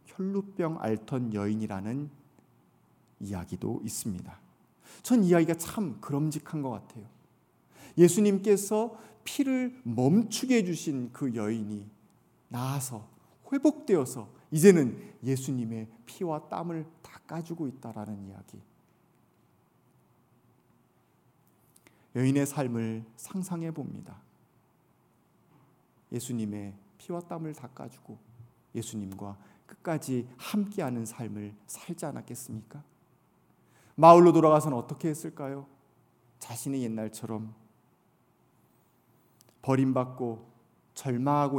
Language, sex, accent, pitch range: Korean, male, native, 115-160 Hz